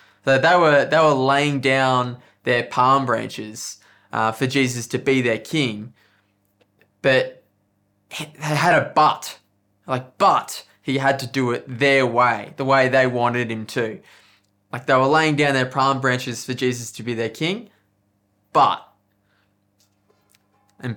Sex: male